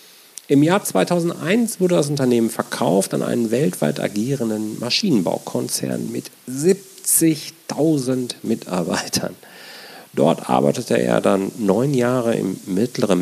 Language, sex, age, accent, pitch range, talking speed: German, male, 40-59, German, 105-155 Hz, 105 wpm